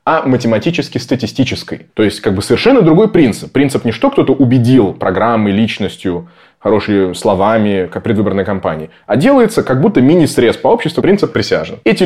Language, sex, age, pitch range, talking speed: Russian, male, 20-39, 100-135 Hz, 155 wpm